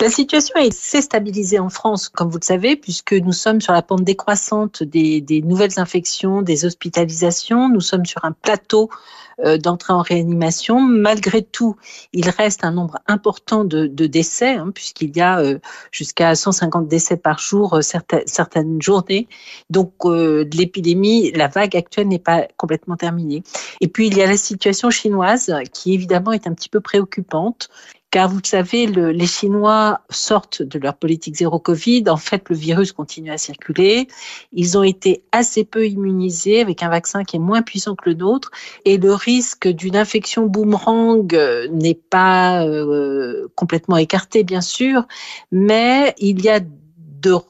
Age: 50-69